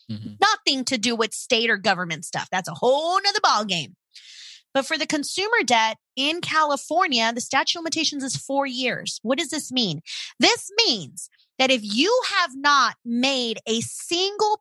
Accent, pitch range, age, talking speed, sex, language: American, 240-365 Hz, 30-49, 170 wpm, female, English